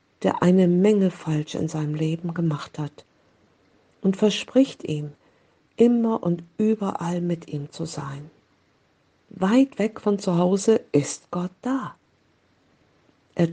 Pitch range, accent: 160-210 Hz, German